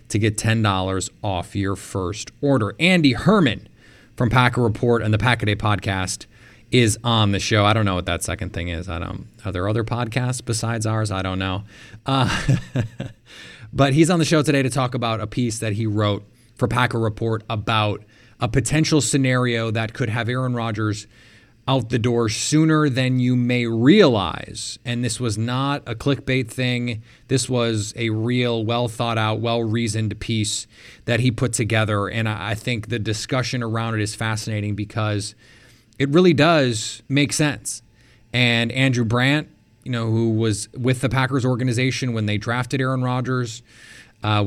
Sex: male